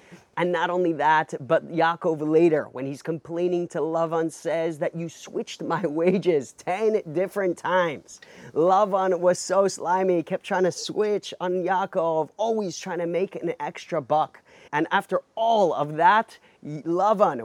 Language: English